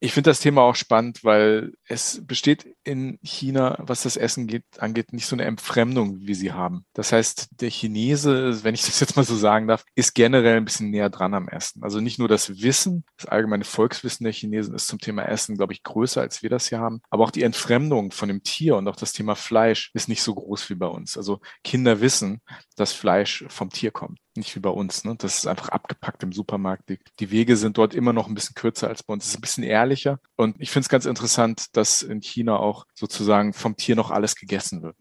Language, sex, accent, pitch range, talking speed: German, male, German, 105-120 Hz, 235 wpm